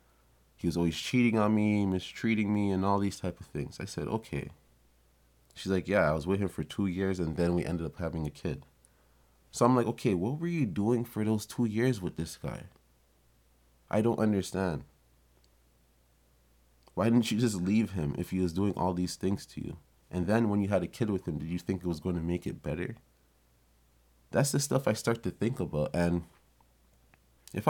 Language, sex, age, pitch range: English, male, 20-39, 65-95 Hz